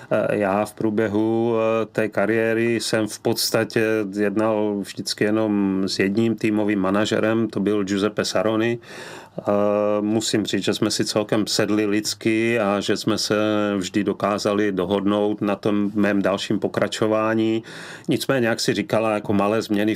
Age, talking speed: 30-49, 140 wpm